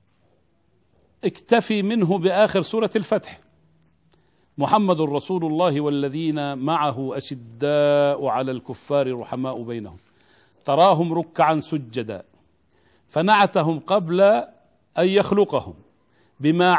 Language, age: Arabic, 40-59